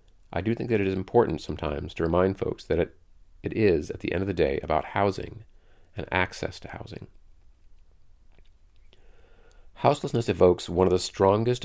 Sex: male